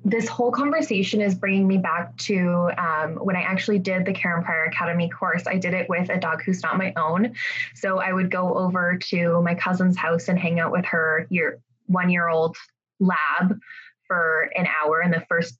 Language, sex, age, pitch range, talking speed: English, female, 20-39, 175-210 Hz, 195 wpm